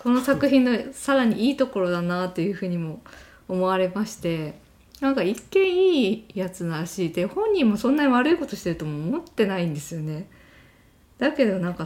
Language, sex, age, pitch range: Japanese, female, 20-39, 160-245 Hz